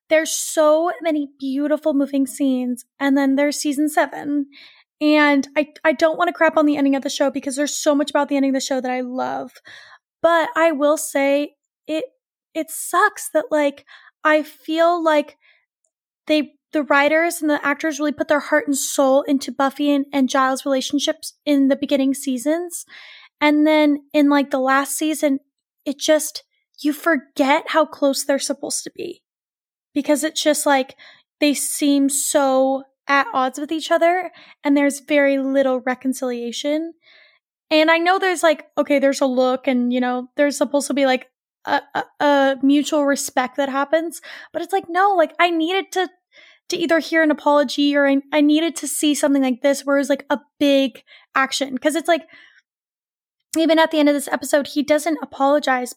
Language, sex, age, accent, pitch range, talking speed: English, female, 10-29, American, 275-315 Hz, 185 wpm